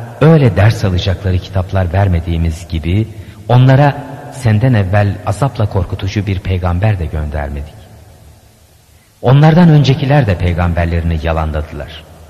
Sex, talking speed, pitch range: male, 100 wpm, 85-130 Hz